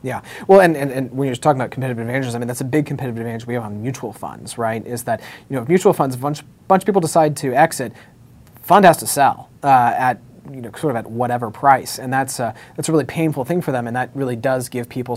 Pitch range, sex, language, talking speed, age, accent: 125-175 Hz, male, English, 265 wpm, 30-49, American